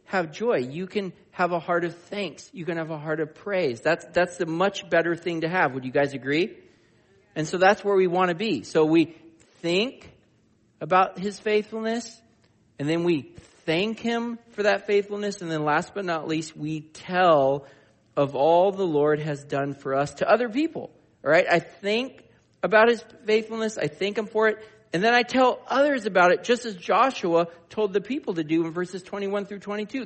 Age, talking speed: 40-59, 200 wpm